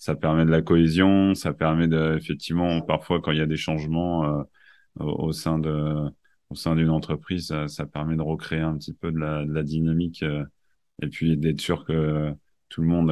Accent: French